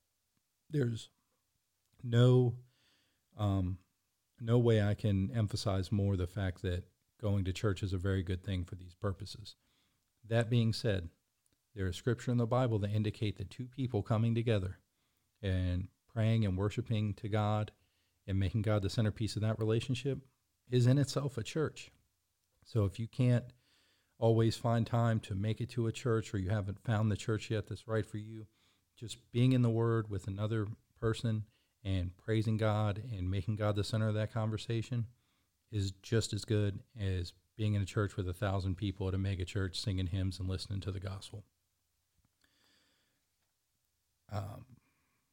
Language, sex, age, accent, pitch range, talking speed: English, male, 50-69, American, 95-115 Hz, 165 wpm